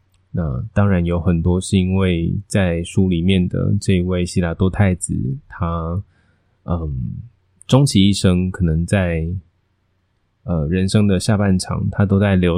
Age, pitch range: 20-39, 90-100 Hz